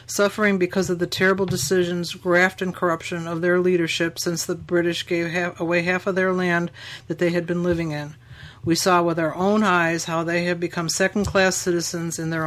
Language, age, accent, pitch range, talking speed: English, 60-79, American, 165-185 Hz, 200 wpm